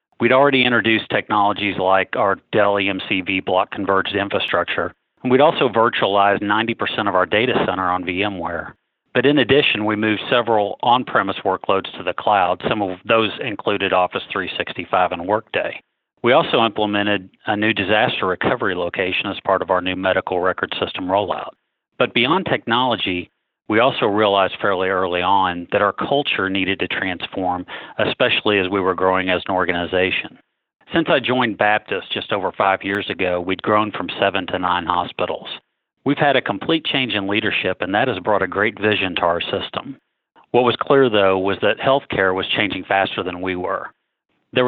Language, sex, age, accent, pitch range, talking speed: English, male, 40-59, American, 95-110 Hz, 170 wpm